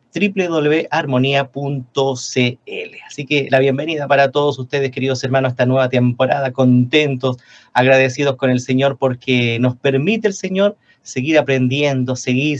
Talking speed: 130 wpm